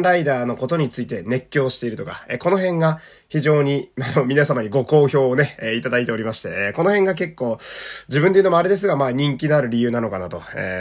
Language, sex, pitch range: Japanese, male, 125-190 Hz